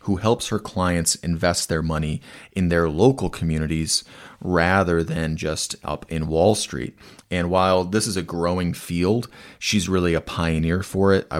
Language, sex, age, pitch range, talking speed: English, male, 30-49, 80-95 Hz, 170 wpm